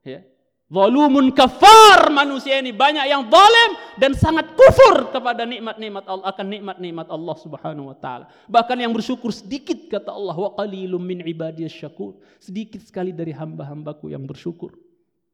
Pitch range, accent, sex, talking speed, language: 145-195 Hz, native, male, 140 wpm, Indonesian